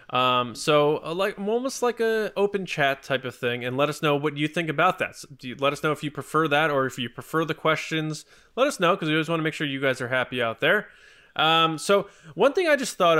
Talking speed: 275 wpm